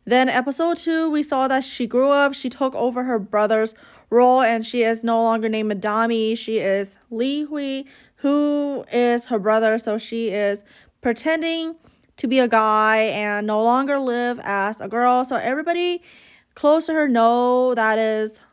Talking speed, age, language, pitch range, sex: 170 wpm, 20-39, English, 225-270 Hz, female